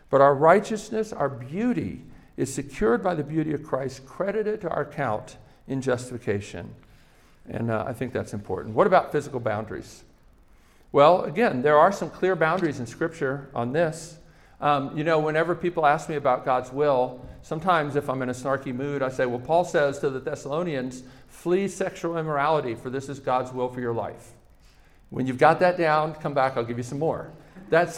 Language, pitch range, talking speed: English, 130-175 Hz, 190 wpm